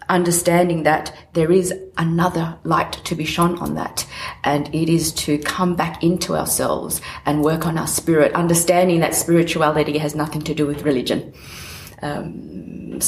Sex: female